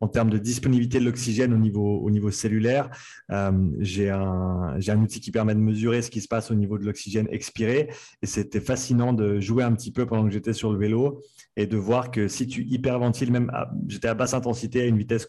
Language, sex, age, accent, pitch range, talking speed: French, male, 30-49, French, 110-125 Hz, 230 wpm